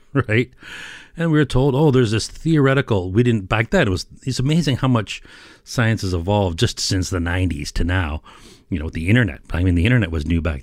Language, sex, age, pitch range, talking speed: English, male, 40-59, 90-130 Hz, 225 wpm